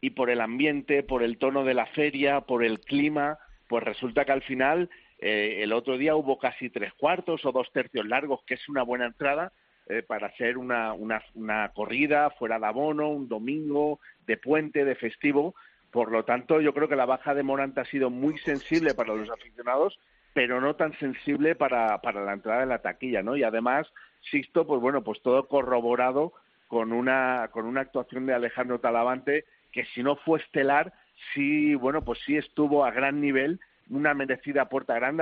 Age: 50-69